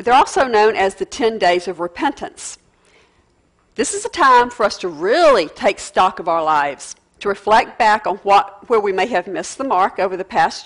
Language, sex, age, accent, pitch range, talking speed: English, female, 50-69, American, 195-280 Hz, 205 wpm